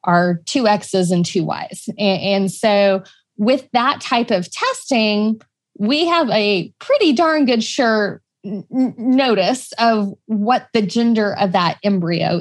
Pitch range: 185-225 Hz